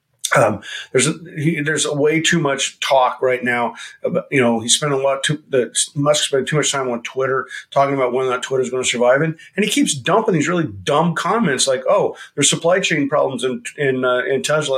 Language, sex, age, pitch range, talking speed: English, male, 50-69, 125-170 Hz, 230 wpm